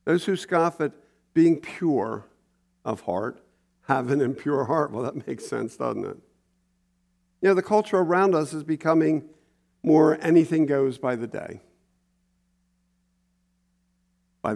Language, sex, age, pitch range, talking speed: English, male, 50-69, 115-180 Hz, 135 wpm